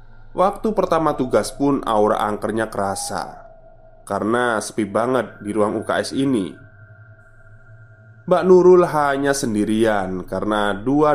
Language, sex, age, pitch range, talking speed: Indonesian, male, 20-39, 105-130 Hz, 110 wpm